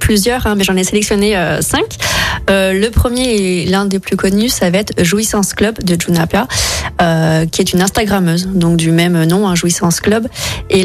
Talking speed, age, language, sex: 200 wpm, 30-49, French, female